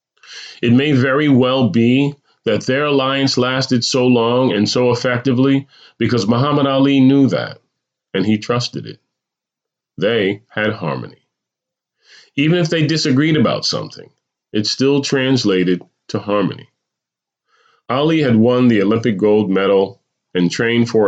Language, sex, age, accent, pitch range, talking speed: English, male, 30-49, American, 100-130 Hz, 135 wpm